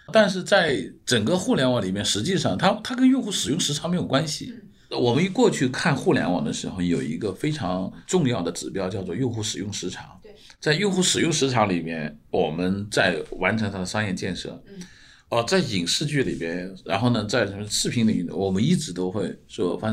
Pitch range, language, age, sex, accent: 105-160 Hz, Chinese, 50-69, male, native